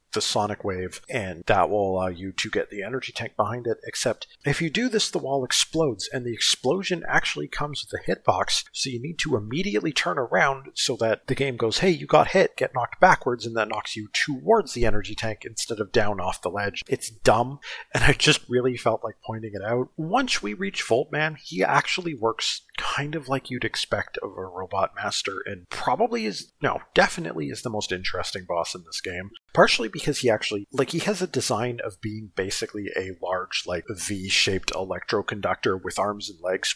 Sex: male